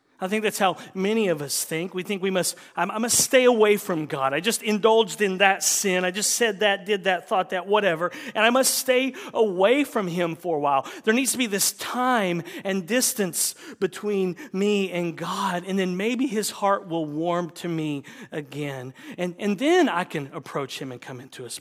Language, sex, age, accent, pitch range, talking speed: English, male, 40-59, American, 140-200 Hz, 210 wpm